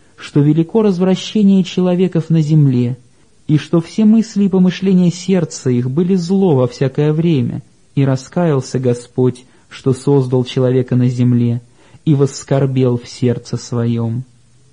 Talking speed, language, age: 130 wpm, Russian, 20-39